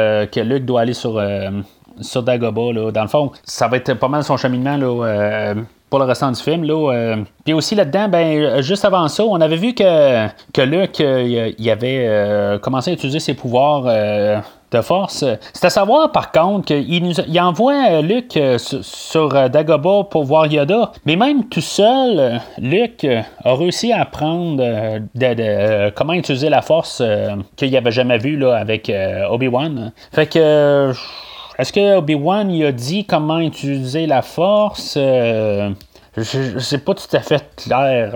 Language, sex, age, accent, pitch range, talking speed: French, male, 30-49, Canadian, 115-165 Hz, 180 wpm